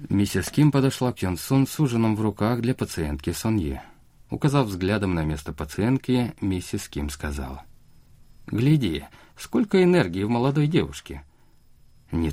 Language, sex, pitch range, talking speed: Russian, male, 80-115 Hz, 135 wpm